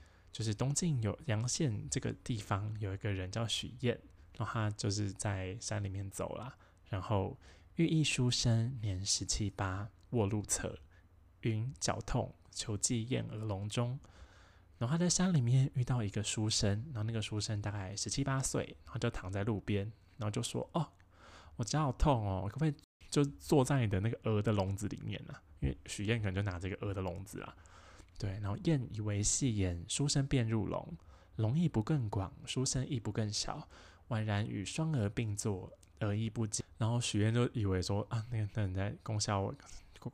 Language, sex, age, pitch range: Chinese, male, 20-39, 95-120 Hz